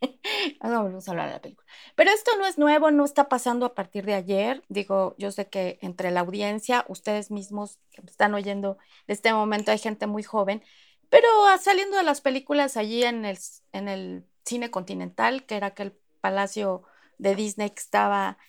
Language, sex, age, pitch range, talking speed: Spanish, female, 30-49, 195-245 Hz, 200 wpm